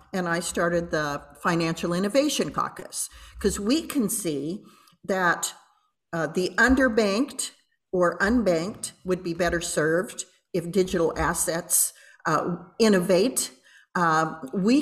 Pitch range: 165-220 Hz